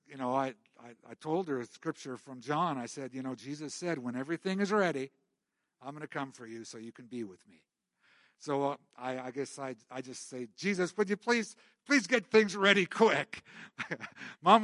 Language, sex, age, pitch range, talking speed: English, male, 60-79, 135-195 Hz, 215 wpm